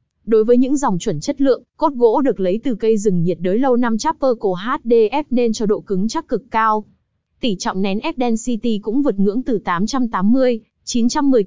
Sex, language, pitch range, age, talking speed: female, Vietnamese, 200-245 Hz, 20-39, 195 wpm